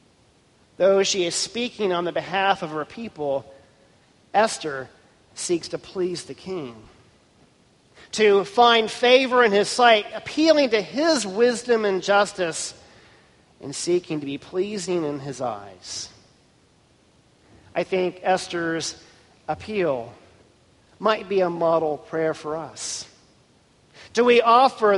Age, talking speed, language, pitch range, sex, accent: 40-59, 120 wpm, English, 155-220 Hz, male, American